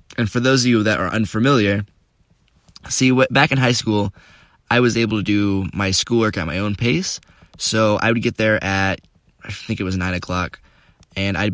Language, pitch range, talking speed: English, 95-115 Hz, 205 wpm